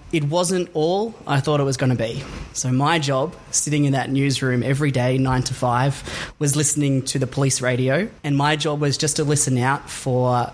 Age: 20-39